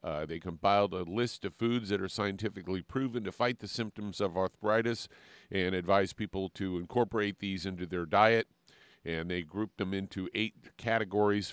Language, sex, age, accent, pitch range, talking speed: English, male, 50-69, American, 90-110 Hz, 170 wpm